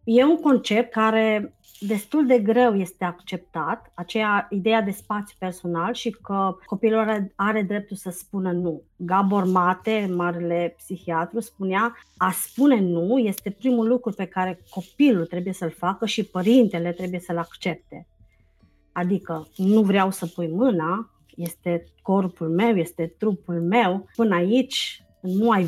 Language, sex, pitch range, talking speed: Romanian, female, 180-230 Hz, 145 wpm